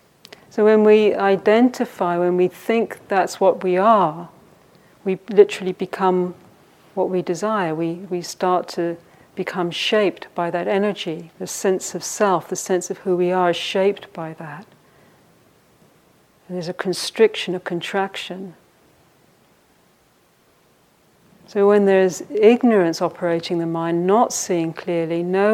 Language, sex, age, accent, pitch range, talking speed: English, female, 50-69, British, 175-195 Hz, 135 wpm